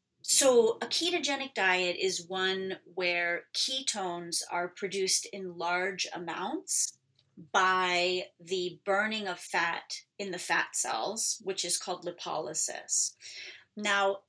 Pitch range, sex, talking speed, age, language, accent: 185-260 Hz, female, 115 wpm, 30-49, English, American